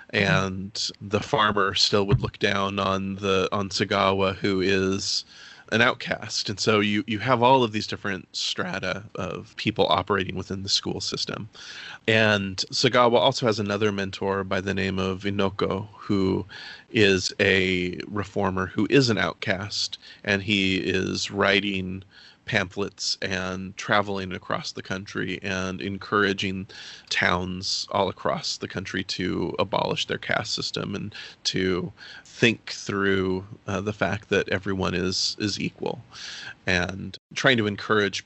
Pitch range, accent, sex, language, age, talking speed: 95-105 Hz, American, male, English, 30-49, 140 wpm